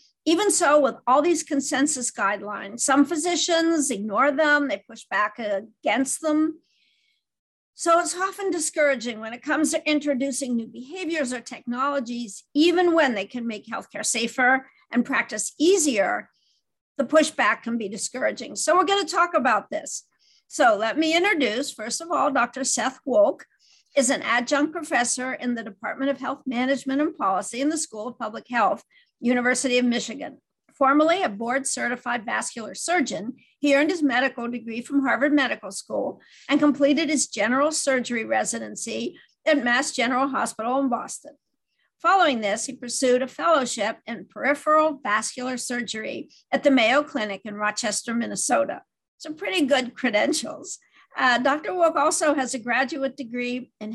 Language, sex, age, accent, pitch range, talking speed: English, female, 50-69, American, 240-305 Hz, 155 wpm